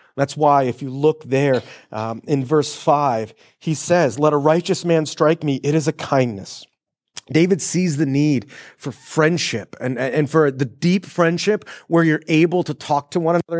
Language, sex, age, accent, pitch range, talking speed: English, male, 30-49, American, 140-175 Hz, 185 wpm